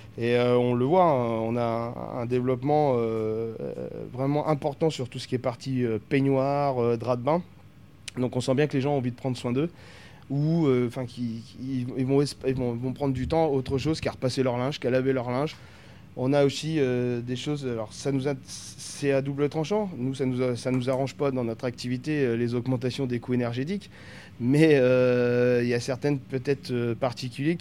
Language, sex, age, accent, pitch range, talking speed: French, male, 20-39, French, 120-140 Hz, 190 wpm